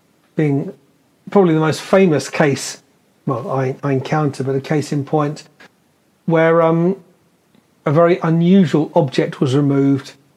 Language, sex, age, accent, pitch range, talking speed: English, male, 40-59, British, 140-170 Hz, 125 wpm